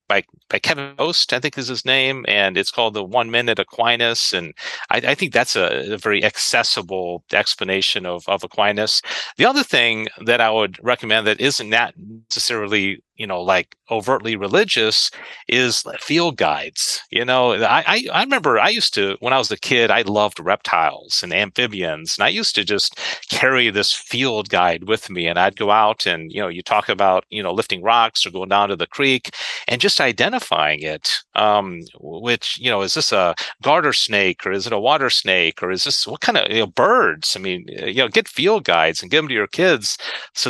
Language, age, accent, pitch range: English, 40-59, American, 100-120 Hz